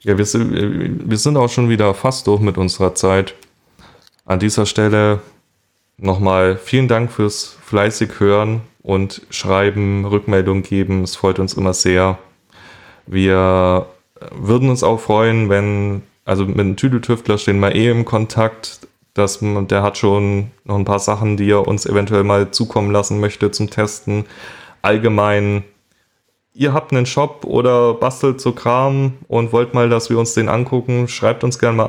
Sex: male